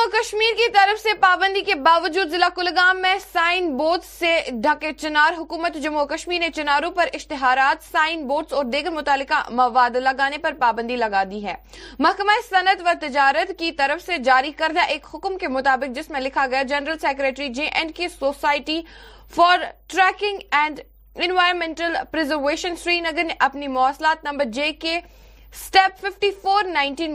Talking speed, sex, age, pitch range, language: 160 wpm, female, 20-39, 275-345 Hz, Urdu